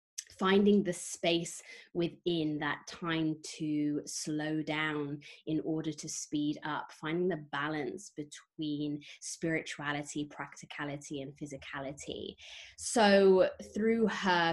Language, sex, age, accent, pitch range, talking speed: English, female, 20-39, British, 150-175 Hz, 105 wpm